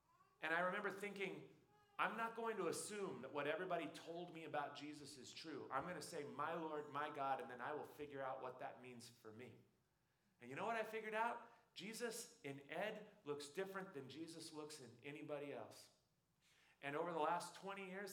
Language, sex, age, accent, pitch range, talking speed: English, male, 40-59, American, 130-200 Hz, 200 wpm